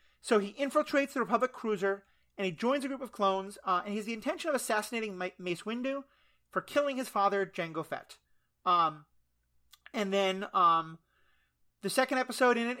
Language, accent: English, American